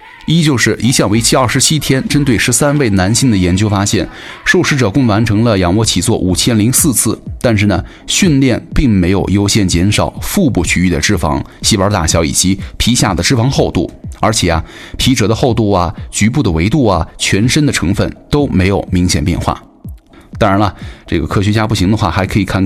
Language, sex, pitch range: Chinese, male, 90-125 Hz